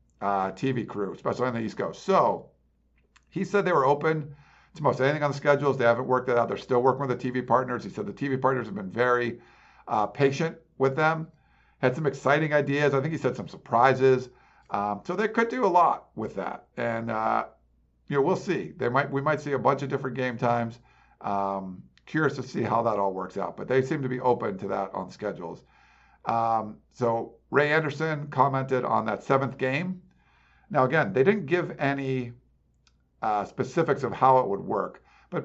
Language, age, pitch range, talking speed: English, 50-69, 115-140 Hz, 205 wpm